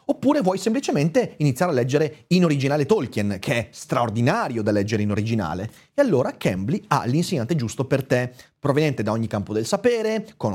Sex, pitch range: male, 110-175 Hz